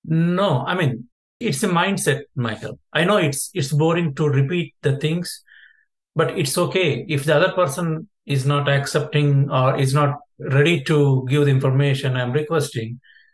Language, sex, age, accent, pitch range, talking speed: English, male, 50-69, Indian, 135-165 Hz, 160 wpm